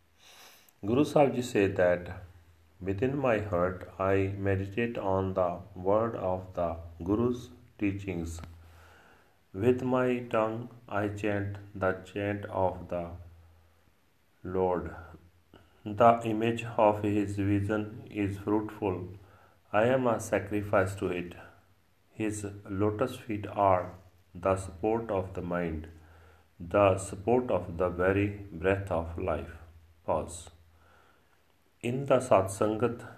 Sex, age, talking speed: male, 40-59, 105 wpm